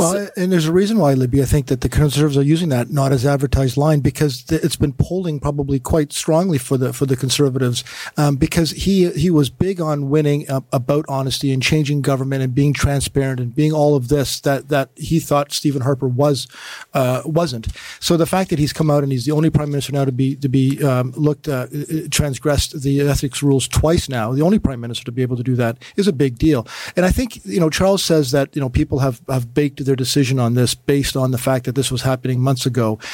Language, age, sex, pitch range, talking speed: English, 50-69, male, 130-155 Hz, 235 wpm